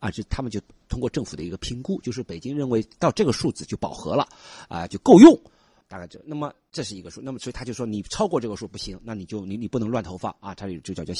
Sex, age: male, 50-69